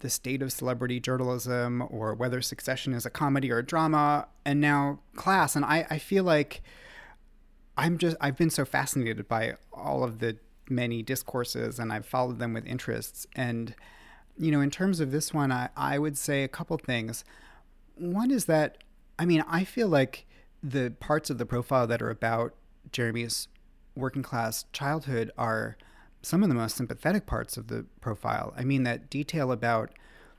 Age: 30-49